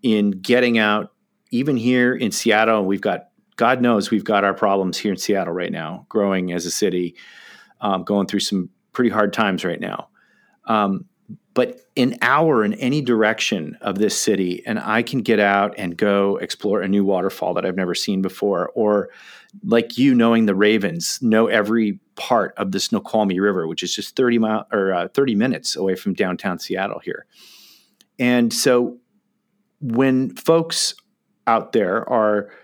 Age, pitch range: 40-59, 100-130 Hz